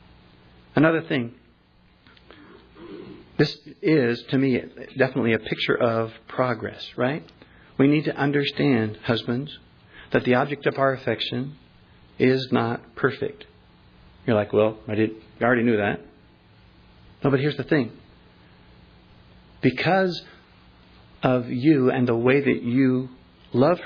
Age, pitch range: 50-69, 100-130 Hz